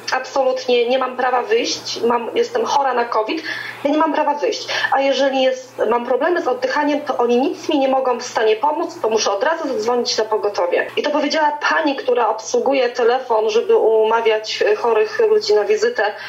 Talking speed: 180 wpm